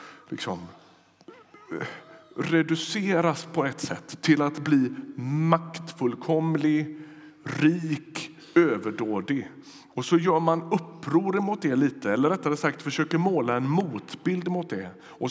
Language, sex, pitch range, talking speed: Swedish, male, 135-170 Hz, 115 wpm